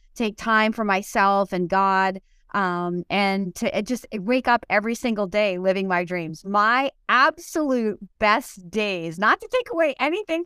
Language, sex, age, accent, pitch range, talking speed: English, female, 30-49, American, 185-235 Hz, 155 wpm